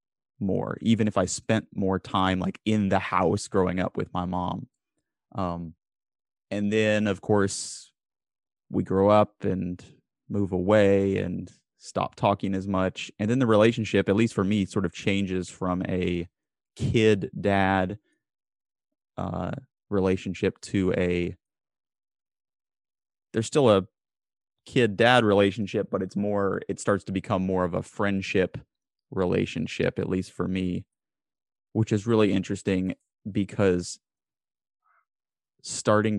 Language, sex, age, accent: English, male, 20-39, American